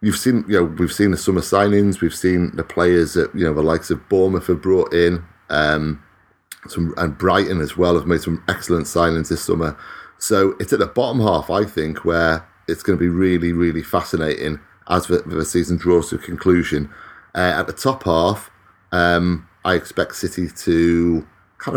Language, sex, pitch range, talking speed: English, male, 85-95 Hz, 195 wpm